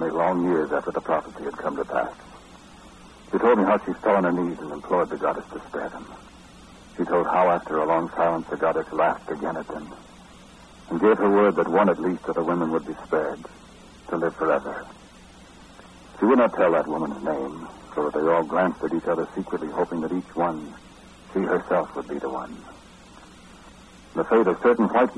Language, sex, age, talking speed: English, male, 60-79, 210 wpm